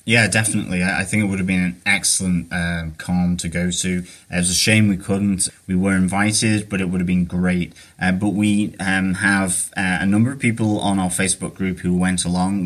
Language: English